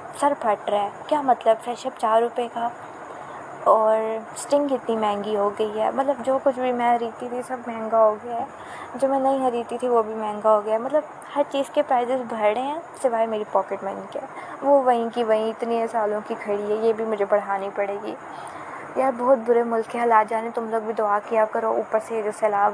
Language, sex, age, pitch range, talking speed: Urdu, female, 20-39, 215-255 Hz, 225 wpm